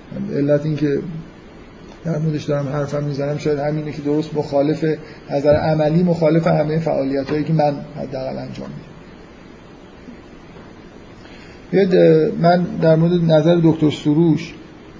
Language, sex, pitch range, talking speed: Persian, male, 150-175 Hz, 120 wpm